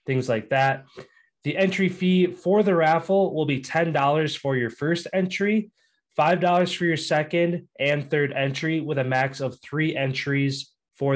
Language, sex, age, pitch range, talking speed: English, male, 20-39, 125-160 Hz, 170 wpm